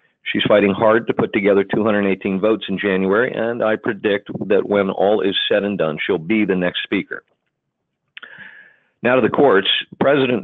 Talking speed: 170 wpm